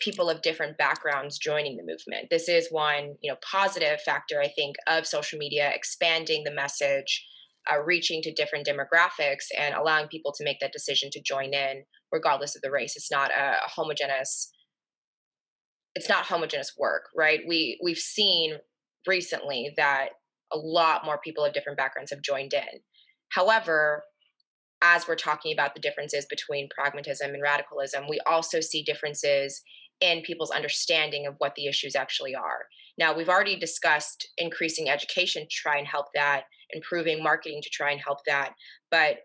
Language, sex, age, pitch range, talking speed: English, female, 20-39, 145-175 Hz, 165 wpm